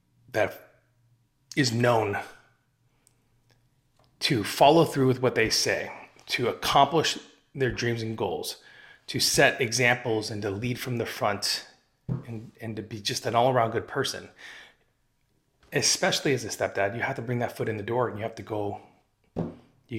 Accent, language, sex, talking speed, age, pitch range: American, English, male, 160 wpm, 30-49, 110-135 Hz